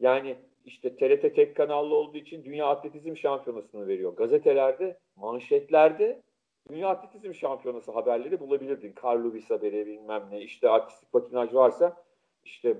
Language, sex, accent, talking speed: Turkish, male, native, 130 wpm